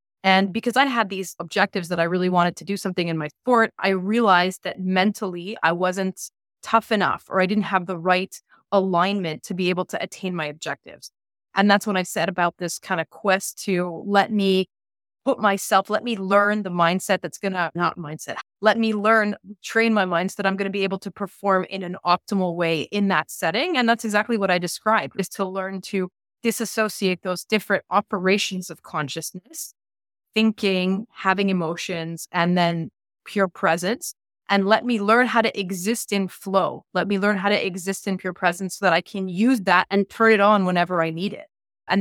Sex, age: female, 30-49